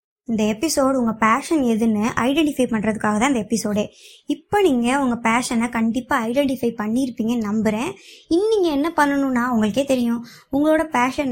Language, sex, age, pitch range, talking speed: Tamil, male, 20-39, 230-285 Hz, 135 wpm